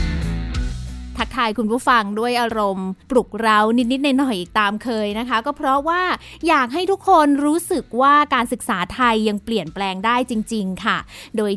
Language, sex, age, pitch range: Thai, female, 20-39, 210-275 Hz